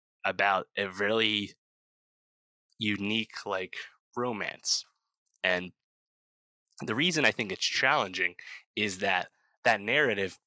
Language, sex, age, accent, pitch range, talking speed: English, male, 20-39, American, 95-110 Hz, 95 wpm